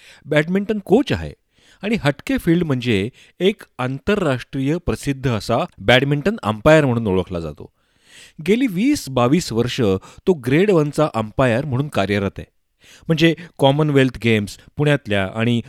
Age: 40-59